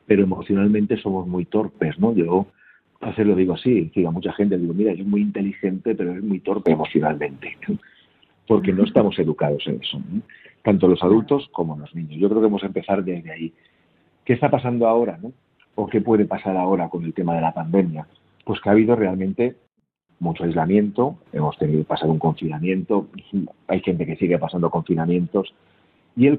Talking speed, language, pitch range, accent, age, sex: 190 wpm, Spanish, 85-105 Hz, Spanish, 40-59, male